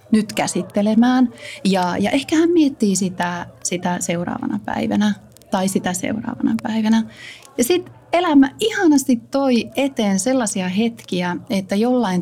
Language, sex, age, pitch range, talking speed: Finnish, female, 30-49, 175-225 Hz, 125 wpm